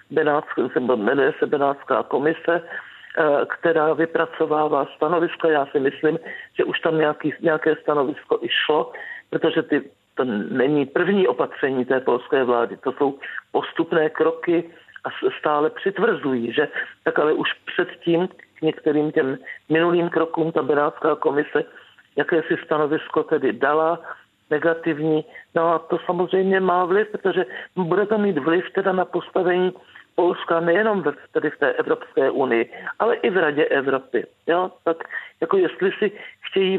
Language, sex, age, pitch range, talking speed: Czech, male, 50-69, 145-180 Hz, 145 wpm